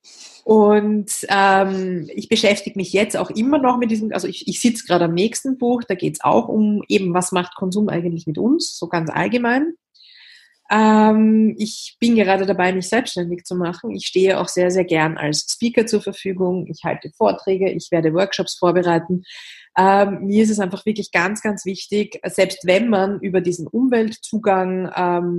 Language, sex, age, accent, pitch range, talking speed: German, female, 30-49, German, 175-210 Hz, 175 wpm